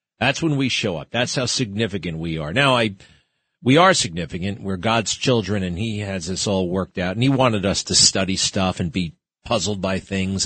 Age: 40-59